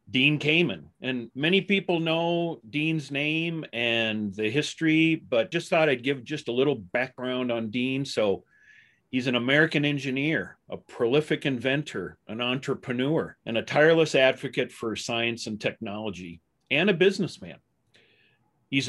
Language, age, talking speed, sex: English, 40-59, 140 wpm, male